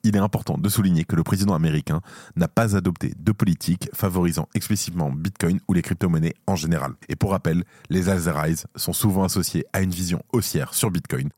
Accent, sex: French, male